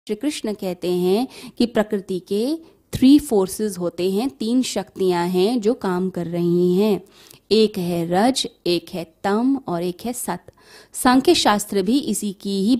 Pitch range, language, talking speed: 185-245 Hz, Hindi, 165 wpm